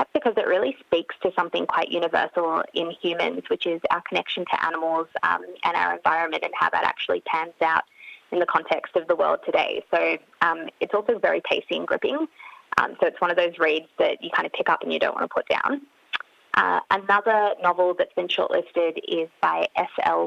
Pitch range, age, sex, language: 170-285 Hz, 20-39, female, English